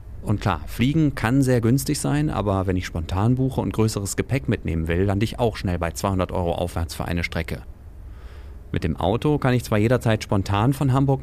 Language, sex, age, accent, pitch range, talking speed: German, male, 30-49, German, 90-110 Hz, 205 wpm